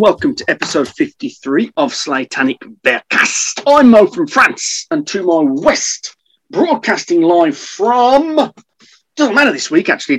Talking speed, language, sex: 135 wpm, English, male